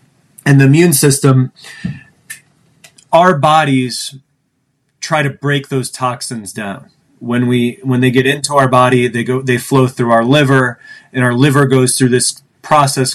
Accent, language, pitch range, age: American, English, 125-145 Hz, 30-49